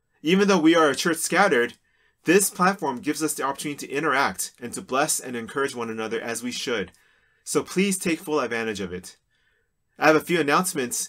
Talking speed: 200 wpm